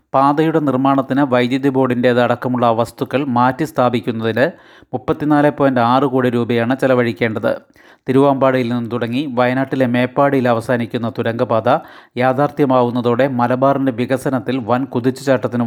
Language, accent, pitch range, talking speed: Malayalam, native, 125-140 Hz, 90 wpm